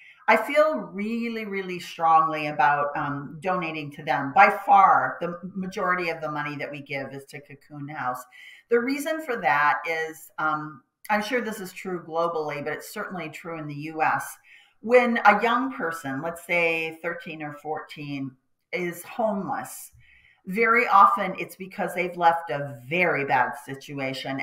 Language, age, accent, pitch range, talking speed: English, 40-59, American, 145-195 Hz, 155 wpm